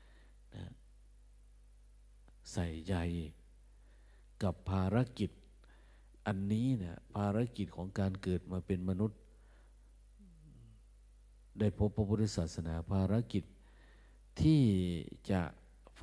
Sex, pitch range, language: male, 80-110 Hz, Thai